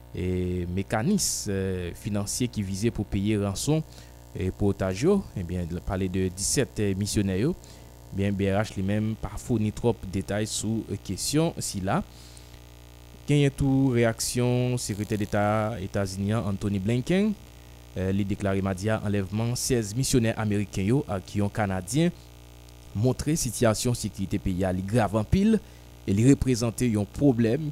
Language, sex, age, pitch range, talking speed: French, male, 20-39, 95-115 Hz, 130 wpm